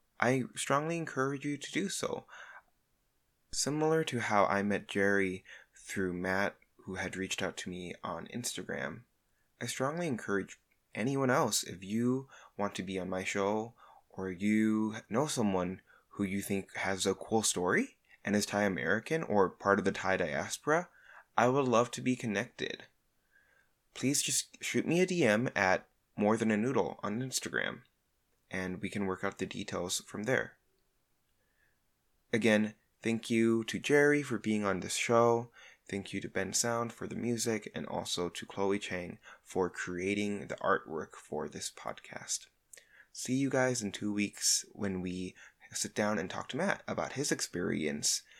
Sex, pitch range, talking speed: male, 95-120 Hz, 165 wpm